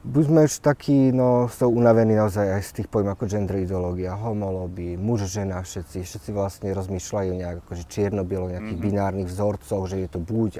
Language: Slovak